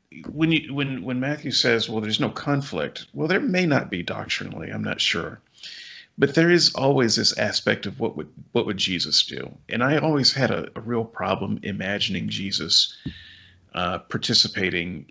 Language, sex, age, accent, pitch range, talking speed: English, male, 40-59, American, 105-135 Hz, 175 wpm